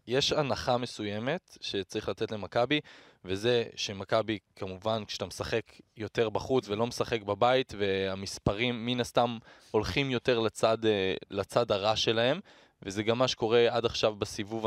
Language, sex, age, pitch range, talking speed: Hebrew, male, 20-39, 105-140 Hz, 130 wpm